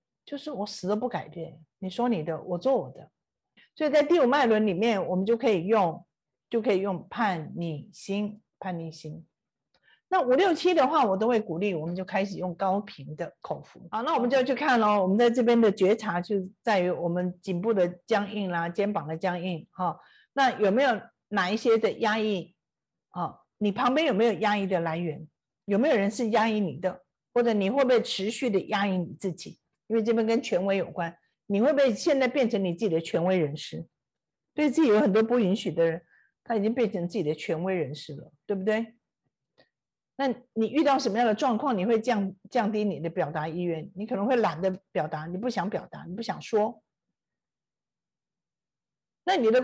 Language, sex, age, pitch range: Chinese, female, 50-69, 180-235 Hz